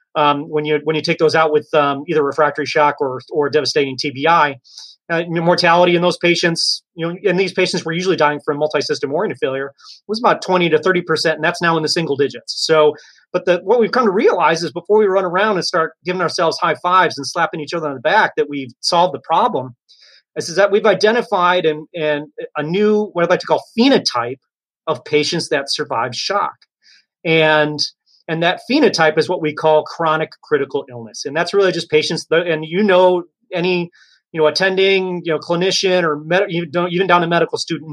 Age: 30-49